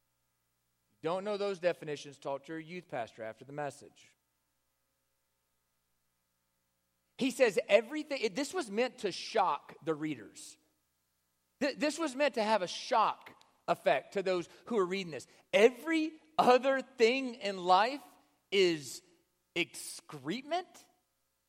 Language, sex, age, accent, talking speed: English, male, 40-59, American, 120 wpm